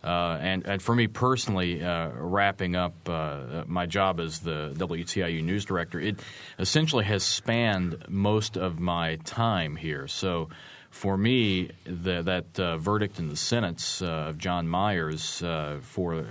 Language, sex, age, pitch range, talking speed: English, male, 30-49, 80-100 Hz, 155 wpm